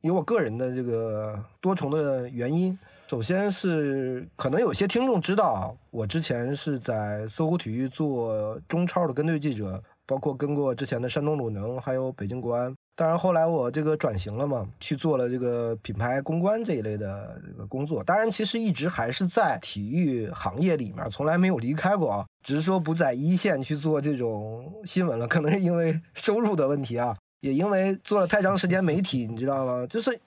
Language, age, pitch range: Chinese, 20-39, 125-180 Hz